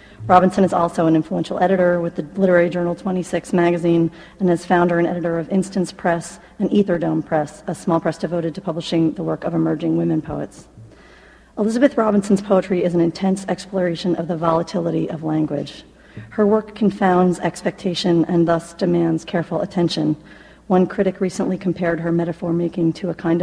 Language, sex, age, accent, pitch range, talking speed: English, female, 40-59, American, 170-195 Hz, 165 wpm